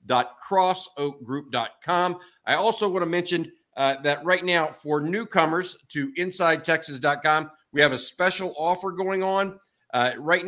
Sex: male